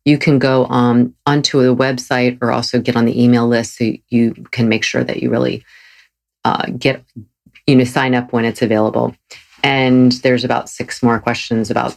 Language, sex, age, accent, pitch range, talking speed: English, female, 40-59, American, 115-145 Hz, 185 wpm